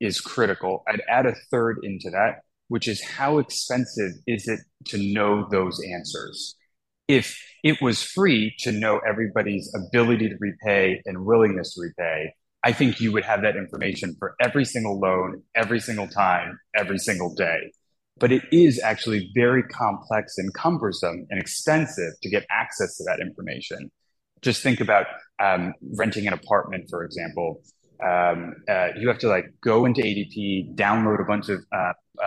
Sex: male